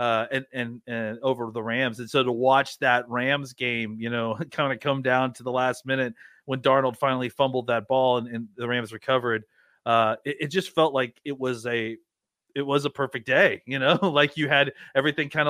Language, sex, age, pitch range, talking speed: English, male, 30-49, 120-150 Hz, 215 wpm